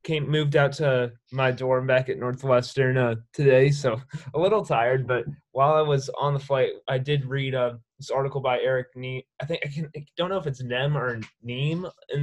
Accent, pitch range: American, 125-145 Hz